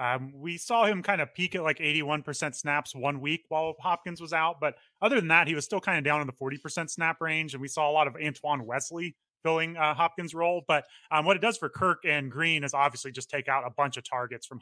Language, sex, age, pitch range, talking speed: English, male, 30-49, 130-160 Hz, 260 wpm